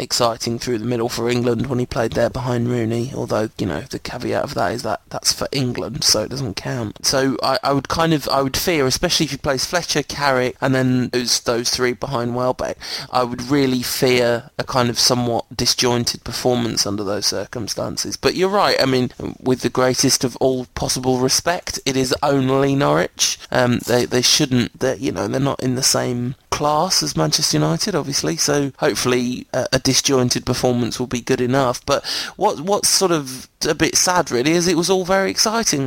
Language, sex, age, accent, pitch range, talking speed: English, male, 20-39, British, 125-140 Hz, 200 wpm